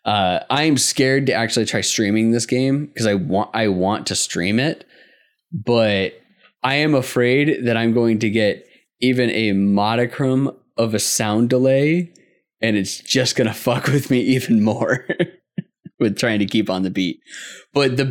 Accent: American